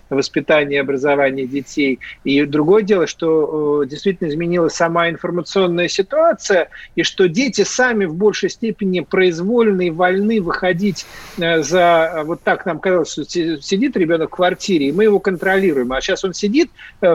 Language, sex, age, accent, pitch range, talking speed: Russian, male, 40-59, native, 165-210 Hz, 155 wpm